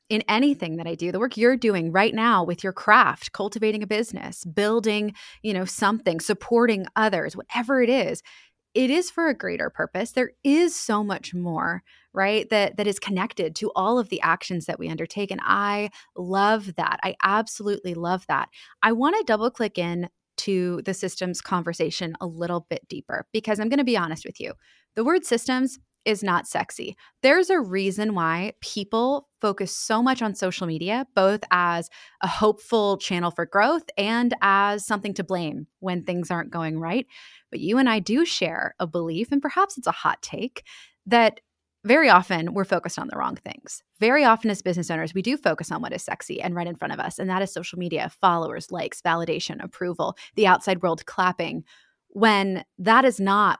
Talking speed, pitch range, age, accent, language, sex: 190 wpm, 180-225 Hz, 20-39, American, English, female